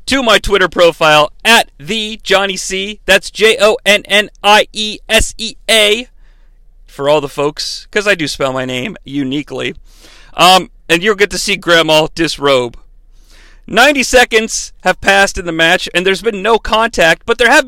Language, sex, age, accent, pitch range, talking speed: English, male, 40-59, American, 160-210 Hz, 145 wpm